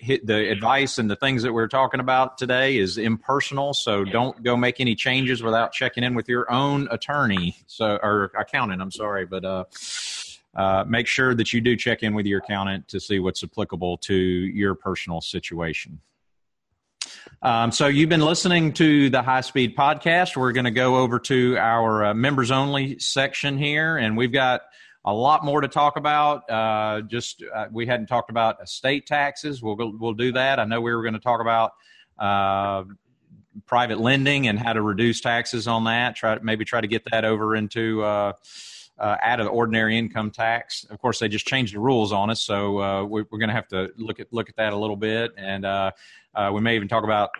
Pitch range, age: 105-130 Hz, 30-49